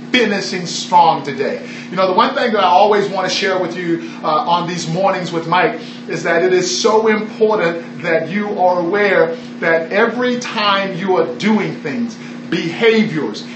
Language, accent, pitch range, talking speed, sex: English, American, 190-230 Hz, 175 wpm, male